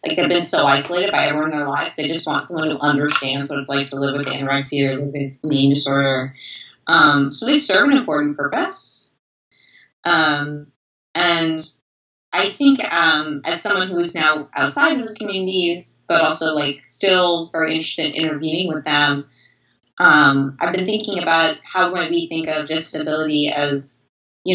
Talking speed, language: 175 wpm, English